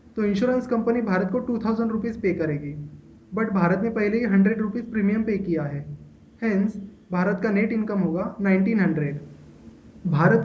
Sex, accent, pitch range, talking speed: male, native, 185-230 Hz, 160 wpm